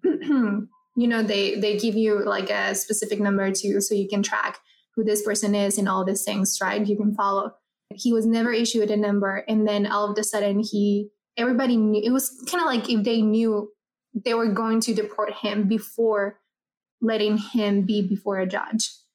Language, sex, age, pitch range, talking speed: English, female, 20-39, 205-225 Hz, 195 wpm